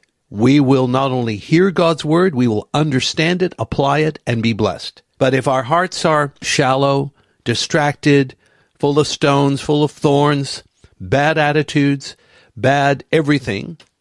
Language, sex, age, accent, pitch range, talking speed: English, male, 60-79, American, 115-150 Hz, 140 wpm